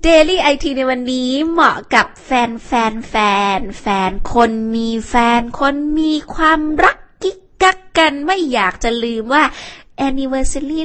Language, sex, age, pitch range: Thai, female, 20-39, 200-275 Hz